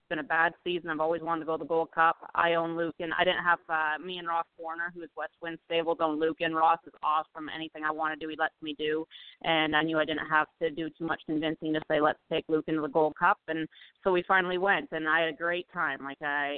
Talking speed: 280 wpm